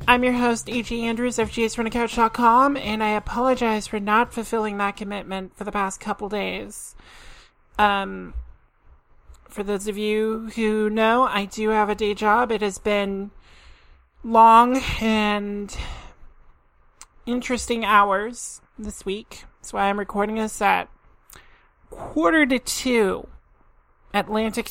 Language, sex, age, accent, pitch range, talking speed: English, male, 30-49, American, 200-230 Hz, 125 wpm